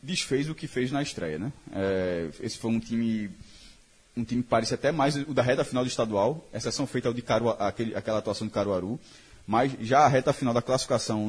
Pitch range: 115-140 Hz